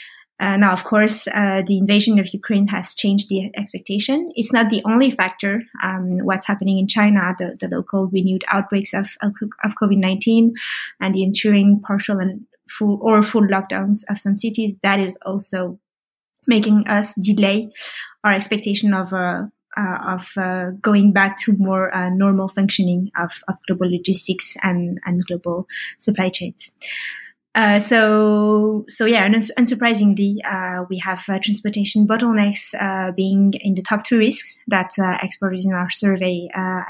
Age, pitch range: 20-39, 190-215 Hz